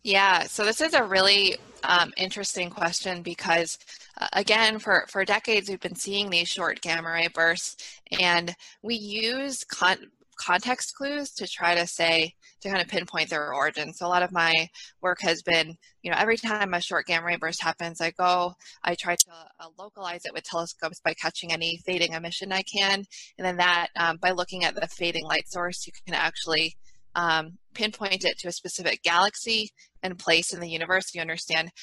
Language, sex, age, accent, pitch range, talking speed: English, female, 20-39, American, 165-195 Hz, 190 wpm